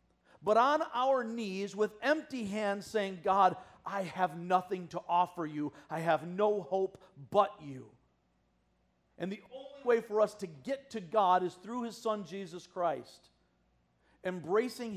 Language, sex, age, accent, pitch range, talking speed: English, male, 50-69, American, 140-205 Hz, 150 wpm